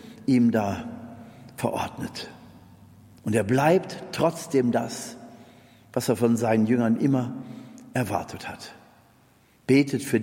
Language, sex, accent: German, male, German